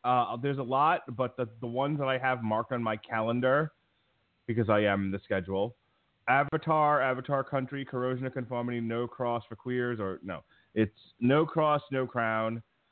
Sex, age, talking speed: male, 30-49, 170 wpm